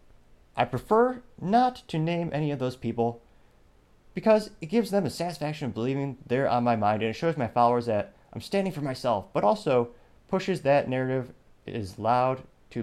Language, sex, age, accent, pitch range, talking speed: English, male, 30-49, American, 100-130 Hz, 180 wpm